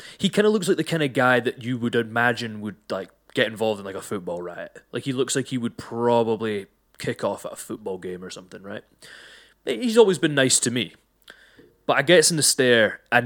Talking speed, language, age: 230 wpm, English, 20-39